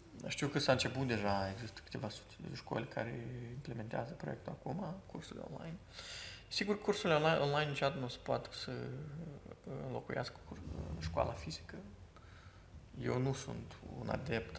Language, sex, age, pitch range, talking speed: Romanian, male, 20-39, 90-130 Hz, 130 wpm